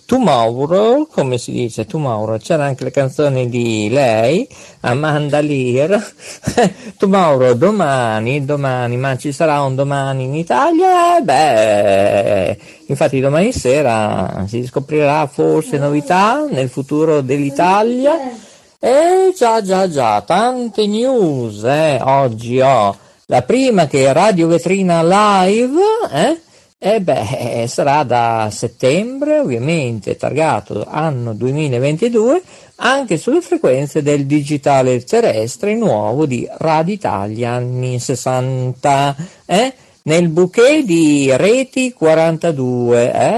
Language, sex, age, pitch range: Italian, male, 50-69, 130-205 Hz